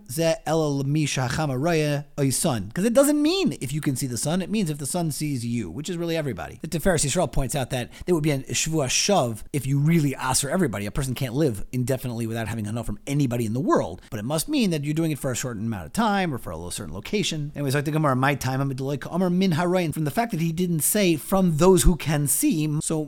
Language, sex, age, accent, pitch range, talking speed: English, male, 30-49, American, 130-180 Hz, 230 wpm